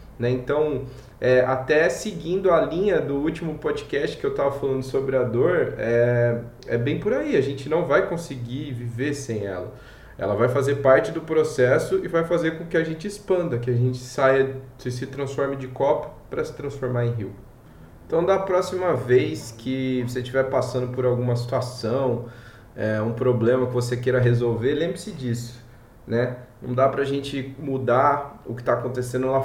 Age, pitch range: 20-39, 120-135 Hz